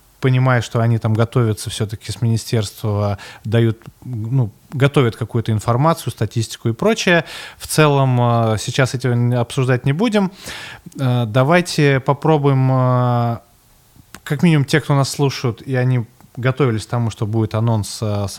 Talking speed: 130 wpm